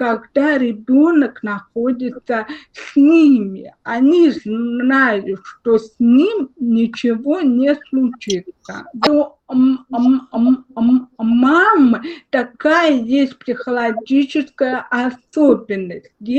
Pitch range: 225-280 Hz